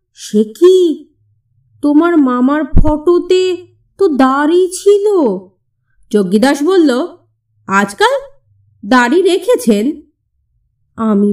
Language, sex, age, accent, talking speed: Bengali, female, 30-49, native, 70 wpm